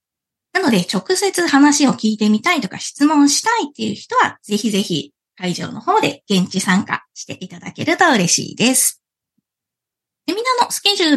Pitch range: 200-330 Hz